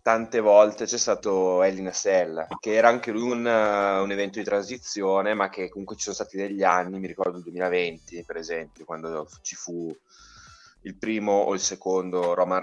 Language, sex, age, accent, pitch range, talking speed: Italian, male, 20-39, native, 90-110 Hz, 175 wpm